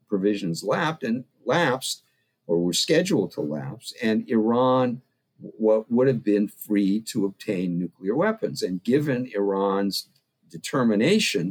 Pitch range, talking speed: 95-130 Hz, 120 wpm